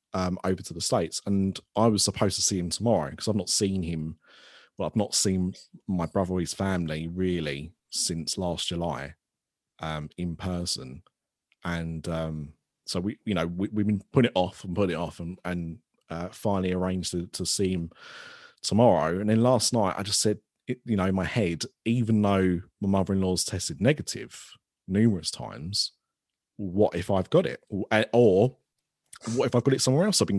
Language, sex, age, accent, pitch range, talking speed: English, male, 30-49, British, 85-110 Hz, 190 wpm